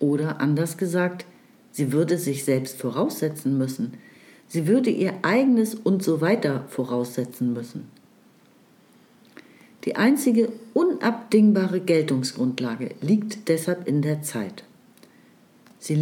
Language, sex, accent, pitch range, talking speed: German, female, German, 145-210 Hz, 105 wpm